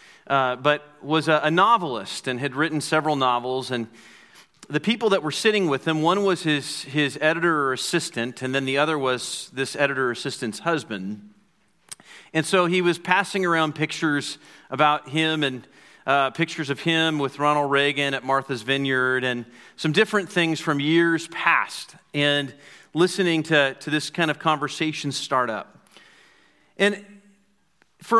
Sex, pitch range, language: male, 135-170 Hz, English